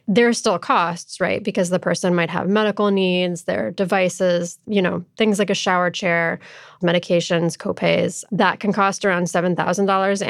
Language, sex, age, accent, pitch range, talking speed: English, female, 20-39, American, 180-215 Hz, 165 wpm